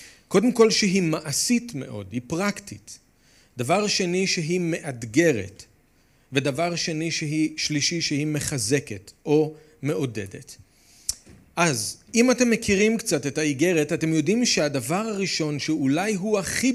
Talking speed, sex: 120 wpm, male